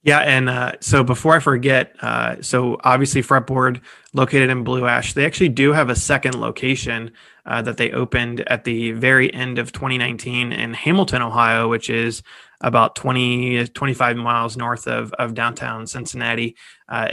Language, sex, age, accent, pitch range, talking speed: English, male, 20-39, American, 115-130 Hz, 165 wpm